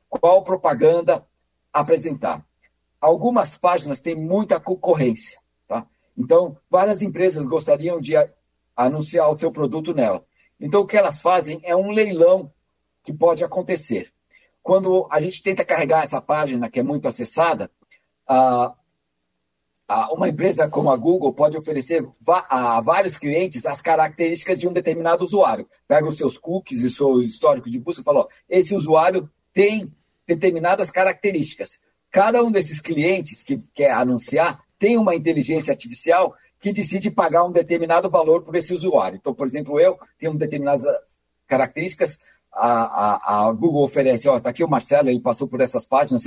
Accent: Brazilian